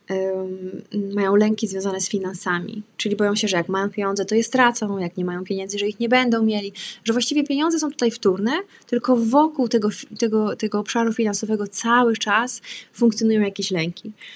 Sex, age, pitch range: female, 20-39, 190-230 Hz